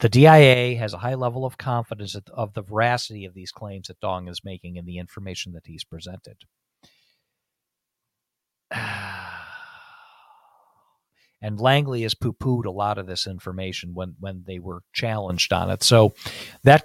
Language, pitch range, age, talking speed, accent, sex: English, 95-120 Hz, 40-59, 150 wpm, American, male